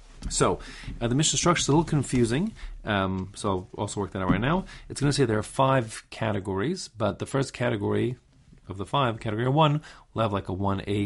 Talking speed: 215 wpm